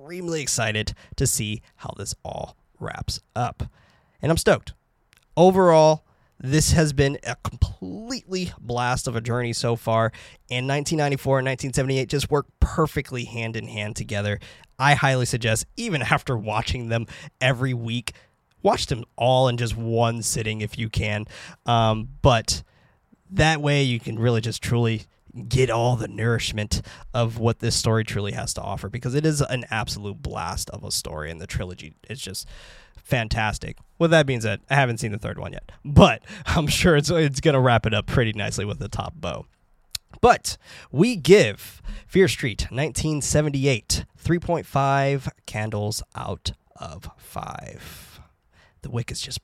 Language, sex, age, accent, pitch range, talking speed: English, male, 20-39, American, 110-140 Hz, 160 wpm